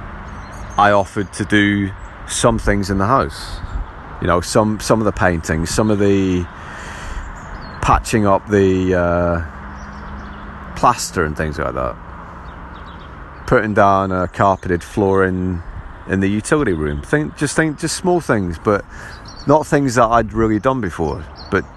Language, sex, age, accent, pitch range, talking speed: English, male, 30-49, British, 80-110 Hz, 145 wpm